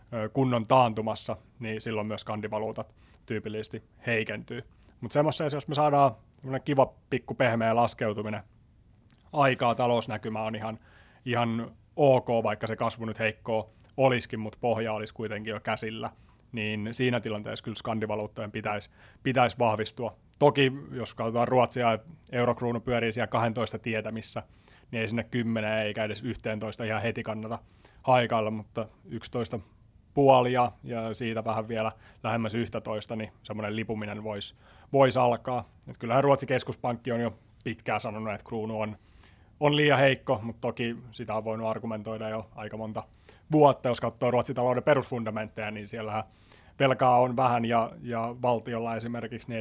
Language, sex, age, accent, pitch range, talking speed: Finnish, male, 30-49, native, 110-120 Hz, 145 wpm